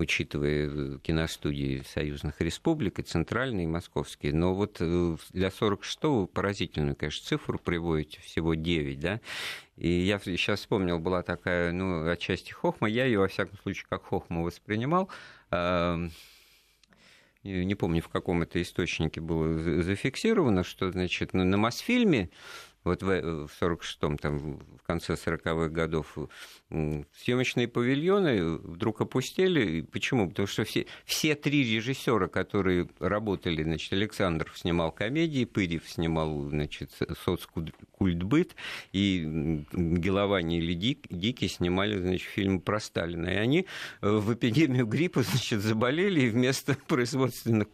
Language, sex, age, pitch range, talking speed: Russian, male, 50-69, 85-110 Hz, 120 wpm